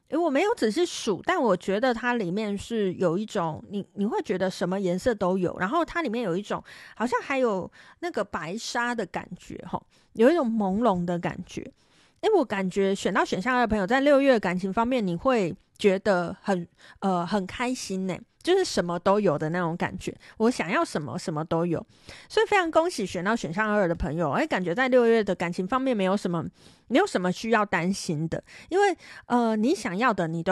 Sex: female